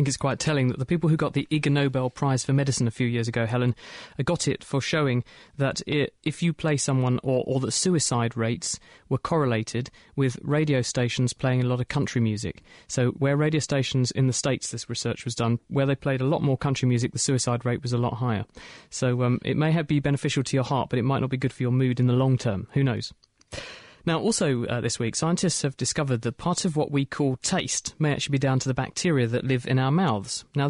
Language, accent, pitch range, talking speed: English, British, 125-150 Hz, 245 wpm